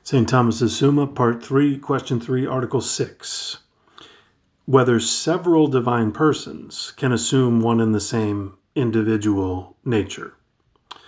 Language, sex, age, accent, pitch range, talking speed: English, male, 40-59, American, 110-135 Hz, 115 wpm